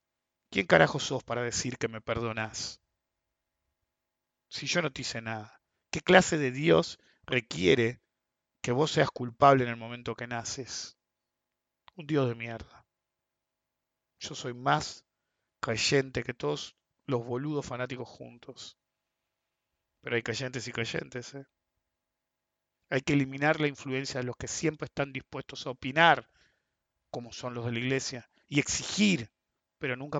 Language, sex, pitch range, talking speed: English, male, 115-145 Hz, 140 wpm